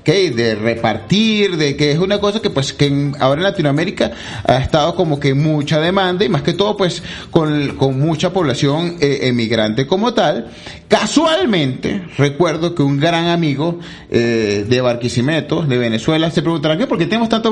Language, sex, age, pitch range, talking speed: Spanish, male, 30-49, 135-190 Hz, 175 wpm